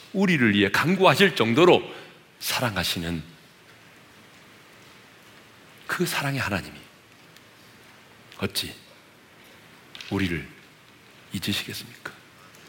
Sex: male